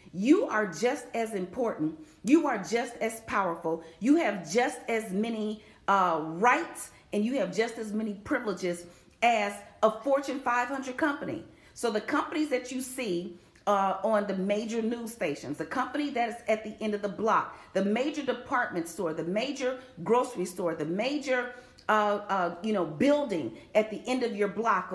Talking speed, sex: 175 wpm, female